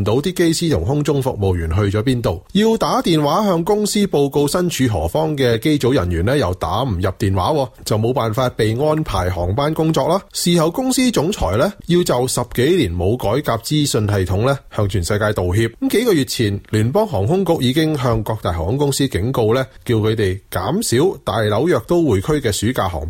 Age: 30-49